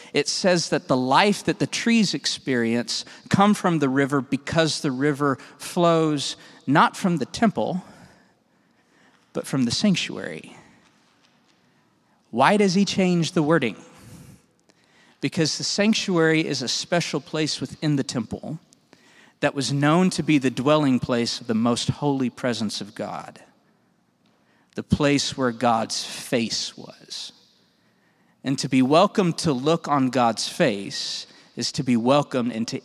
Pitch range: 125-165 Hz